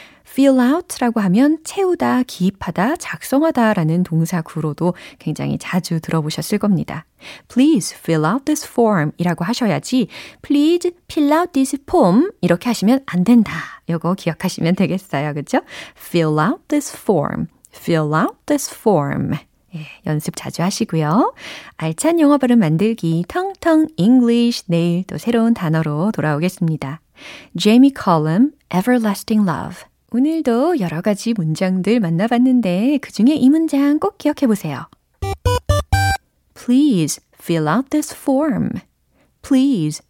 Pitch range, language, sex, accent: 170-275 Hz, Korean, female, native